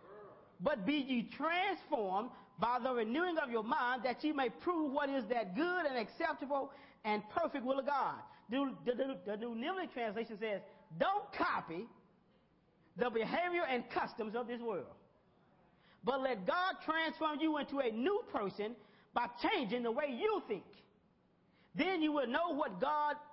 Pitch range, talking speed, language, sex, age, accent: 225-315 Hz, 160 wpm, English, male, 40-59, American